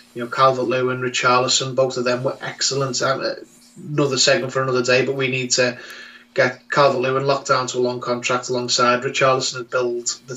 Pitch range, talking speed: 125-145 Hz, 180 wpm